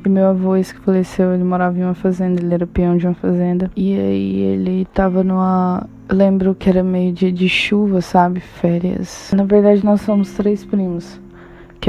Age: 10-29